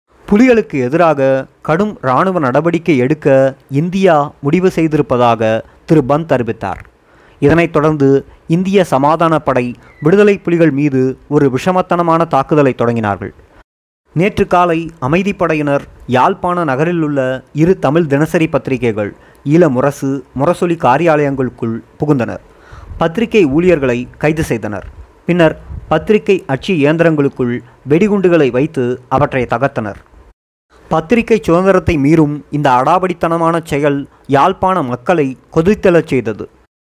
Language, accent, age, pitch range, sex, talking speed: Tamil, native, 30-49, 135-175 Hz, male, 95 wpm